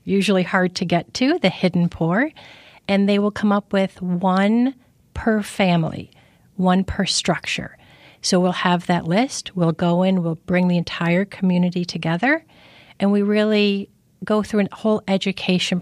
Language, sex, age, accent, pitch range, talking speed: English, female, 40-59, American, 175-210 Hz, 160 wpm